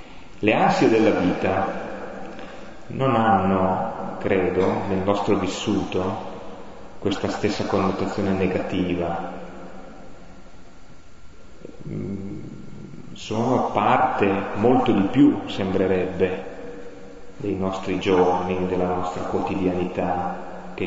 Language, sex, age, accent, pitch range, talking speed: Italian, male, 30-49, native, 95-115 Hz, 80 wpm